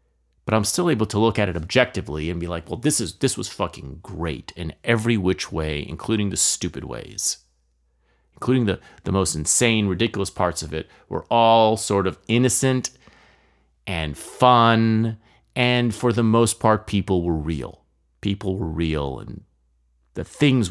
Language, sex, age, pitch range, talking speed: English, male, 30-49, 75-110 Hz, 165 wpm